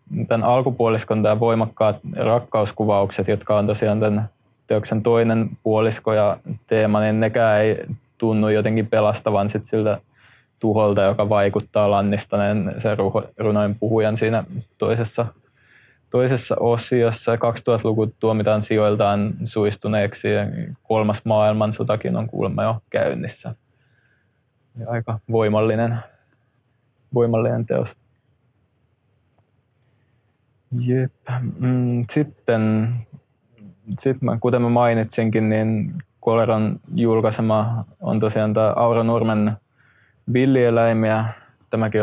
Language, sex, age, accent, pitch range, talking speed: Finnish, male, 20-39, native, 110-120 Hz, 95 wpm